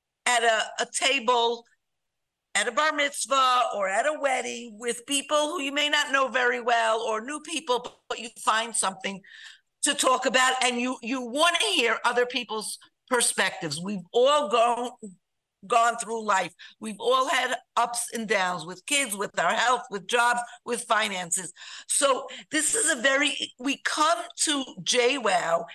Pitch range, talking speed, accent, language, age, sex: 220-265 Hz, 165 wpm, American, English, 50-69, female